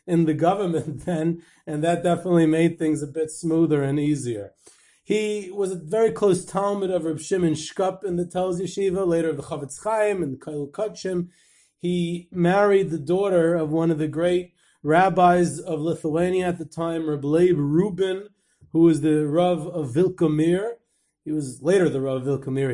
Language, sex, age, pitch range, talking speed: English, male, 30-49, 150-175 Hz, 175 wpm